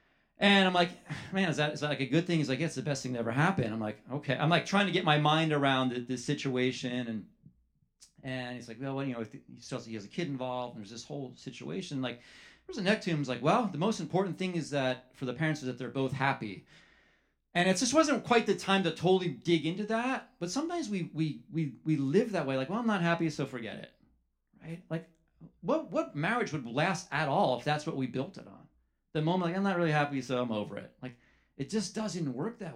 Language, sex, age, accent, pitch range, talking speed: English, male, 30-49, American, 130-180 Hz, 255 wpm